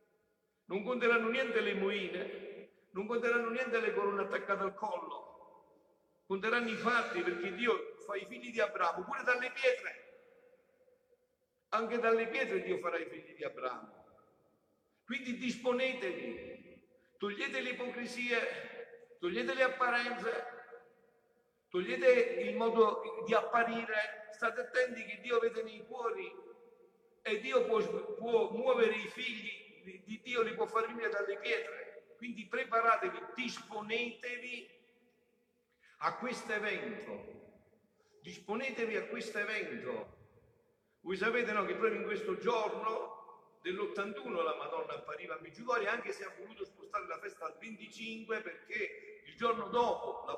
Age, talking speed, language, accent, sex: 60-79, 130 wpm, Italian, native, male